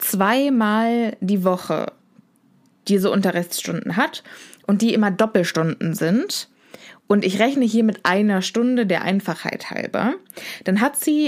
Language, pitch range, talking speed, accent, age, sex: German, 185-245 Hz, 130 wpm, German, 20-39, female